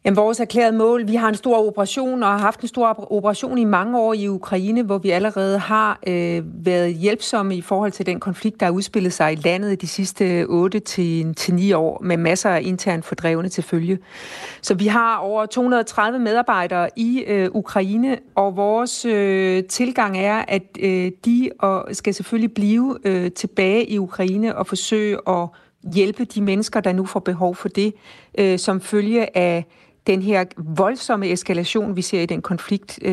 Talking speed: 170 wpm